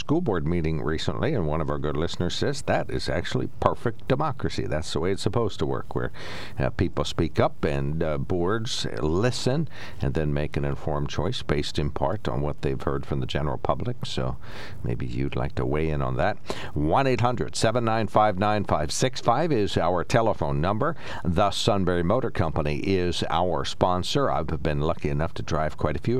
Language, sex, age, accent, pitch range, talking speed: English, male, 60-79, American, 75-110 Hz, 180 wpm